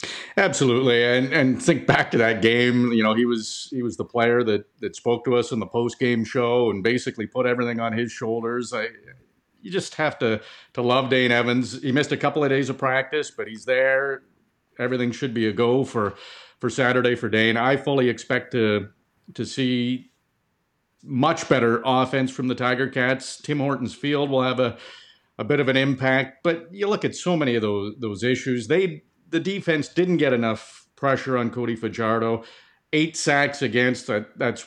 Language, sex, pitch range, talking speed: English, male, 115-135 Hz, 190 wpm